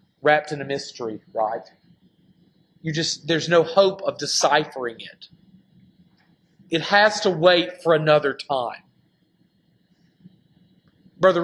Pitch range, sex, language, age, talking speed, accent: 170-200 Hz, male, English, 40-59, 110 wpm, American